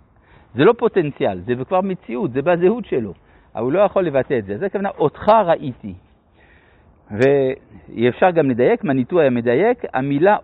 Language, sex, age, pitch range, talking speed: Hebrew, male, 60-79, 120-185 Hz, 150 wpm